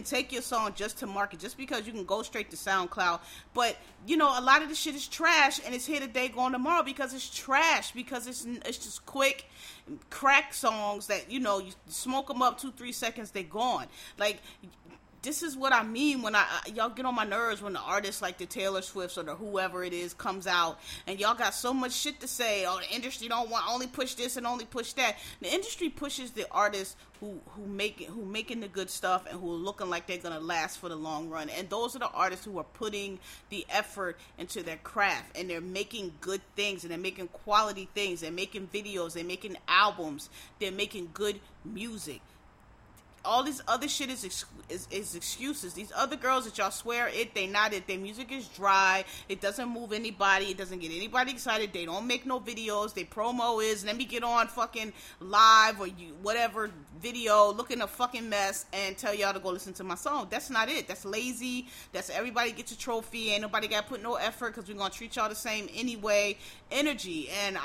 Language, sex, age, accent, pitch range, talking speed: English, female, 30-49, American, 195-245 Hz, 220 wpm